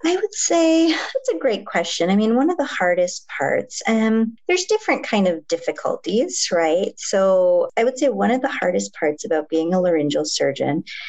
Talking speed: 190 wpm